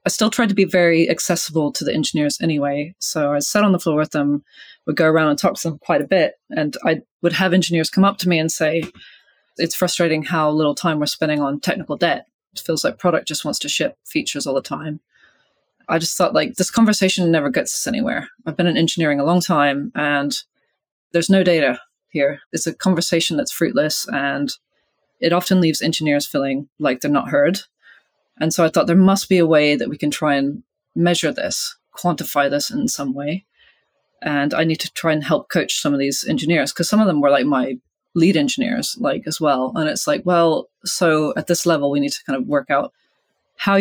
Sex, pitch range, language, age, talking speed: female, 145-180 Hz, English, 20-39, 220 wpm